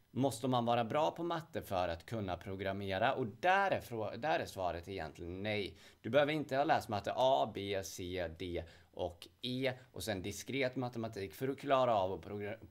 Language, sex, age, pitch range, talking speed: Swedish, male, 30-49, 95-130 Hz, 175 wpm